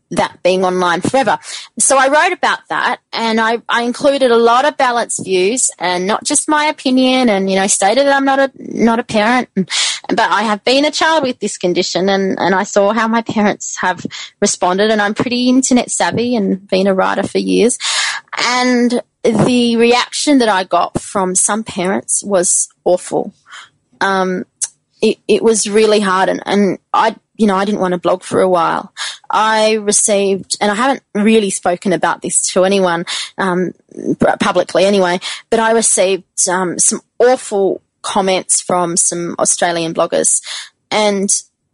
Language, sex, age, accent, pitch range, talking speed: English, female, 20-39, Australian, 190-245 Hz, 170 wpm